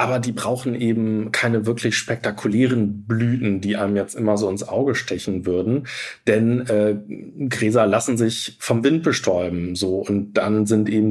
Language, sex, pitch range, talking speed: German, male, 105-120 Hz, 160 wpm